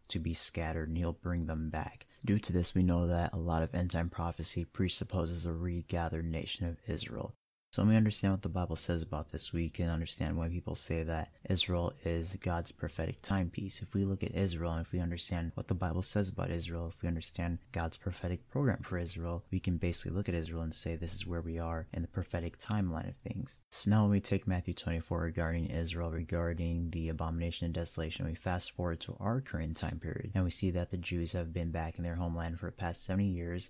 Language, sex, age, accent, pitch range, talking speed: English, male, 20-39, American, 85-95 Hz, 230 wpm